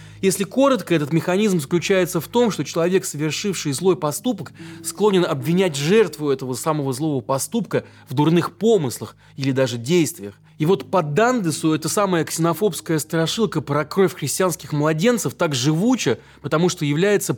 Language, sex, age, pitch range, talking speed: Russian, male, 20-39, 130-185 Hz, 145 wpm